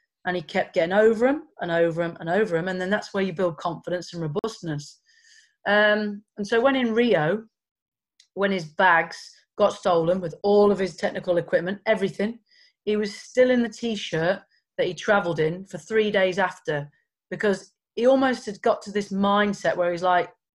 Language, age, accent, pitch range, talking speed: English, 40-59, British, 175-210 Hz, 185 wpm